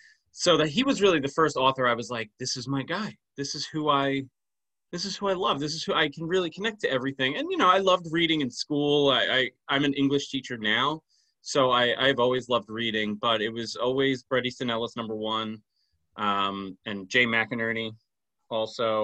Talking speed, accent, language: 215 wpm, American, English